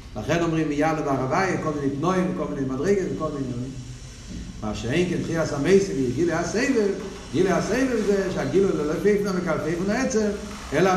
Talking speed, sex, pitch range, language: 165 wpm, male, 130-205 Hz, Hebrew